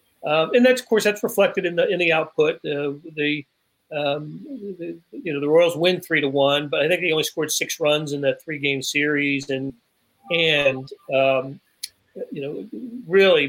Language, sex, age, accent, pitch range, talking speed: English, male, 40-59, American, 140-175 Hz, 190 wpm